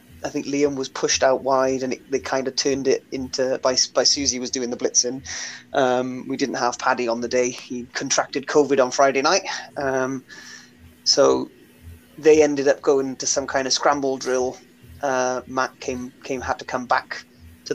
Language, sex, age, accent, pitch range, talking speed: English, male, 20-39, British, 120-145 Hz, 195 wpm